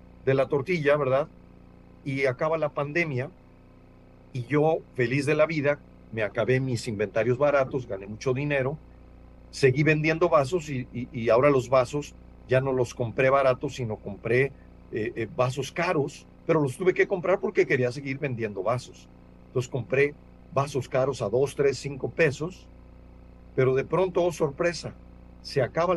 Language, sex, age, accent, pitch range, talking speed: Spanish, male, 50-69, Mexican, 100-155 Hz, 155 wpm